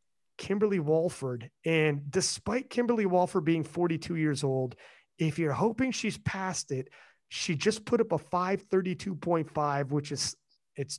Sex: male